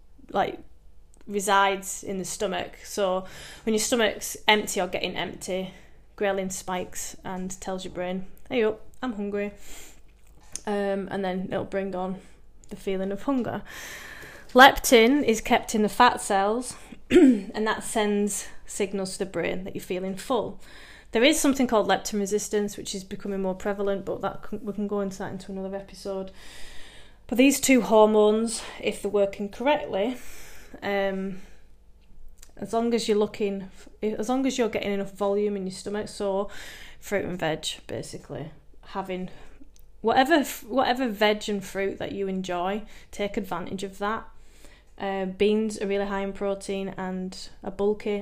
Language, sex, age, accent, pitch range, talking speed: English, female, 20-39, British, 195-220 Hz, 155 wpm